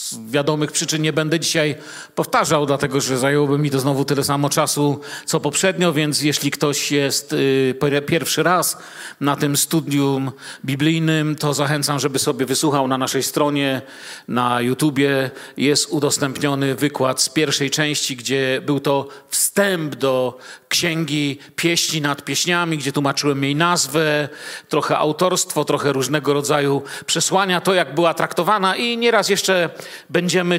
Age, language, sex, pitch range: 40-59, Polish, male, 145-190 Hz